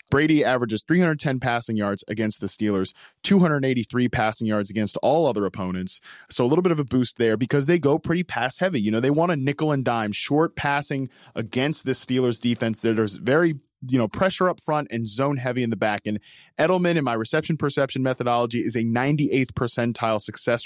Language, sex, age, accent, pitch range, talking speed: English, male, 20-39, American, 115-150 Hz, 200 wpm